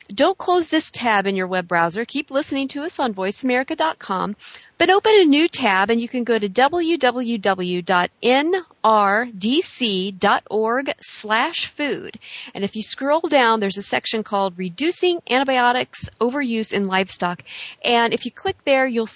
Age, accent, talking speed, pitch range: 40-59, American, 145 wpm, 200-265 Hz